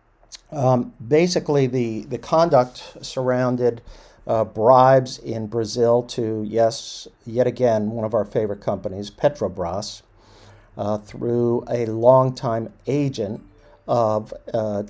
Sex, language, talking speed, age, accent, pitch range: male, English, 115 wpm, 50-69, American, 105-125 Hz